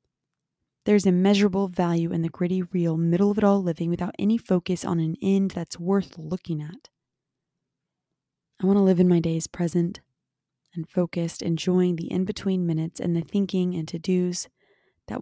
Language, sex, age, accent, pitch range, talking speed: English, female, 20-39, American, 165-185 Hz, 155 wpm